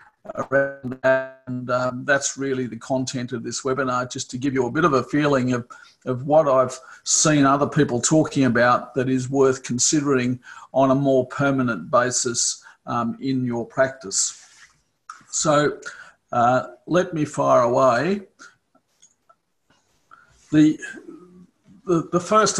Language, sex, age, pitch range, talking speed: English, male, 50-69, 130-155 Hz, 135 wpm